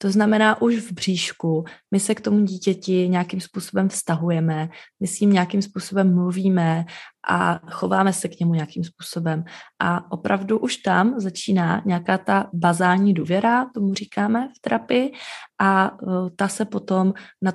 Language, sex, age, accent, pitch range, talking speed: Czech, female, 20-39, native, 180-220 Hz, 145 wpm